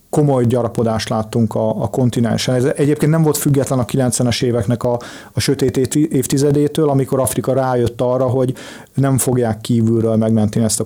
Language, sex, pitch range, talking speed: Hungarian, male, 120-140 Hz, 160 wpm